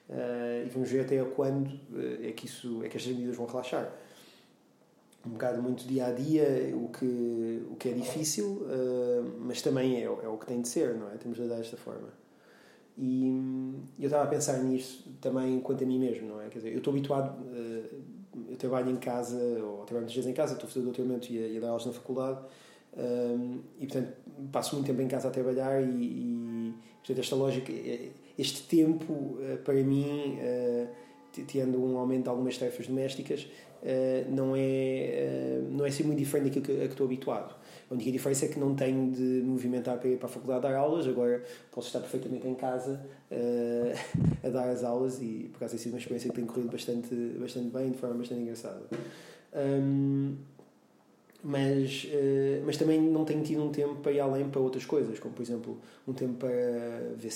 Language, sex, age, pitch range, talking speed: Portuguese, male, 20-39, 120-135 Hz, 200 wpm